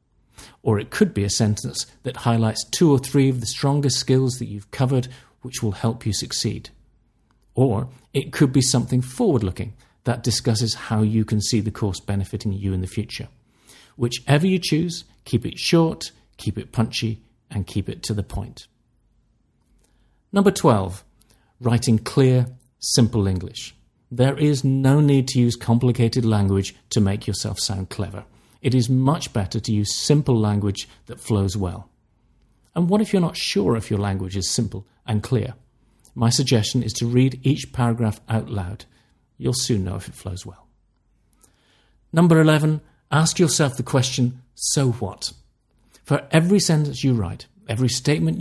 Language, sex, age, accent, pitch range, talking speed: English, male, 40-59, British, 105-130 Hz, 160 wpm